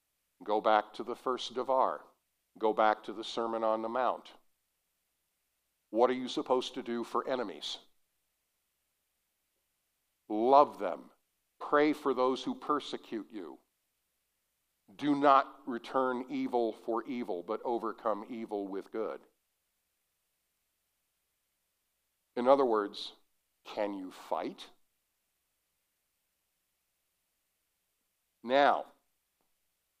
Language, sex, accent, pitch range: English, male, American, 120-175 Hz